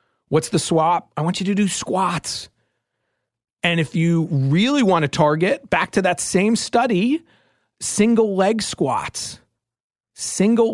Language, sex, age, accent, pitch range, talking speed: English, male, 40-59, American, 150-190 Hz, 140 wpm